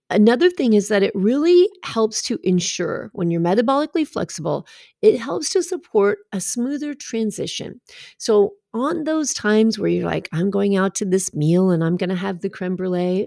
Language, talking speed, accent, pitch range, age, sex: English, 180 wpm, American, 165-210 Hz, 40-59, female